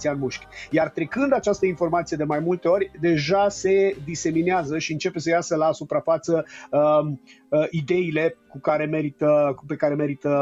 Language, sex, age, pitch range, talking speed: Romanian, male, 30-49, 145-180 Hz, 155 wpm